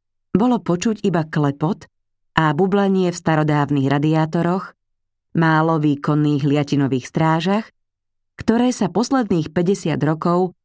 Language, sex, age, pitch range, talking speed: Slovak, female, 30-49, 140-175 Hz, 100 wpm